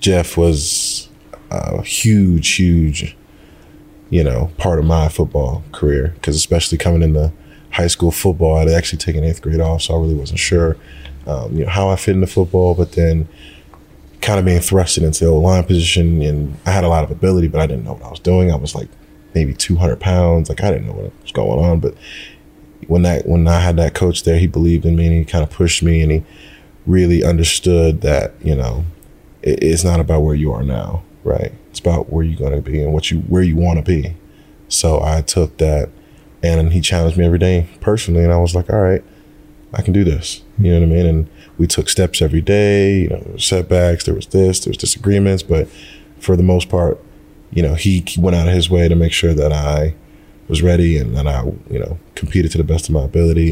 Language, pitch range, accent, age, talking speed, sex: English, 80-90 Hz, American, 30-49, 225 wpm, male